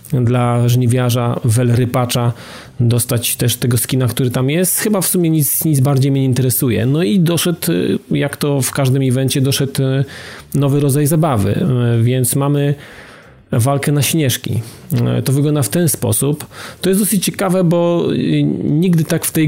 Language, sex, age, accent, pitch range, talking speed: Polish, male, 40-59, native, 125-160 Hz, 155 wpm